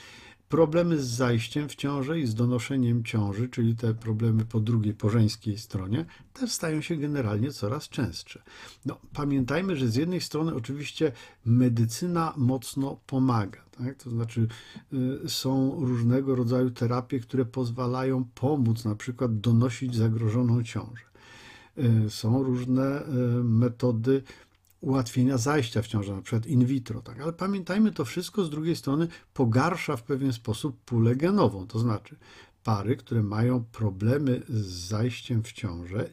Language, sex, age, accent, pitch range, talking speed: Polish, male, 50-69, native, 115-145 Hz, 135 wpm